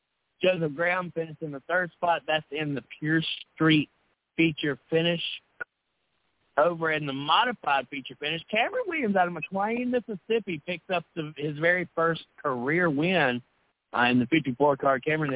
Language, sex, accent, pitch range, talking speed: English, male, American, 135-180 Hz, 150 wpm